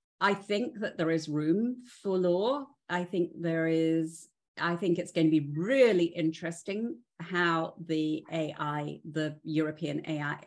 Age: 50-69